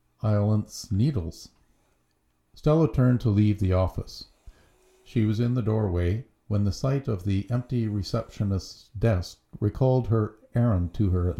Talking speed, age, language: 140 wpm, 50-69, English